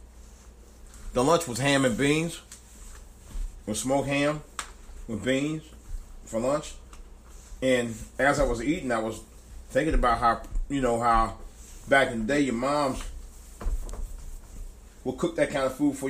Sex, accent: male, American